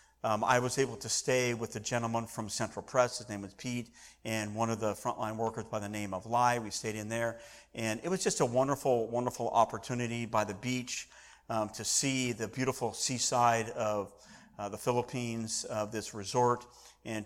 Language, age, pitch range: English, 50-69, 110-130 Hz